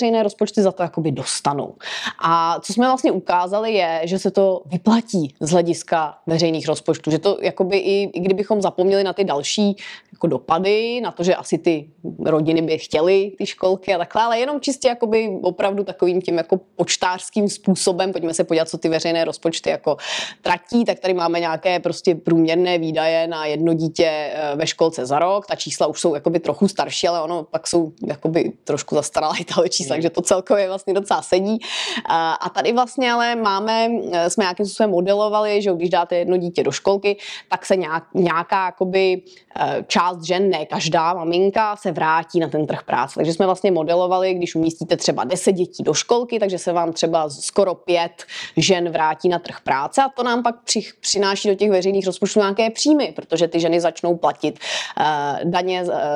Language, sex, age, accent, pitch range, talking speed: Czech, female, 20-39, native, 165-200 Hz, 180 wpm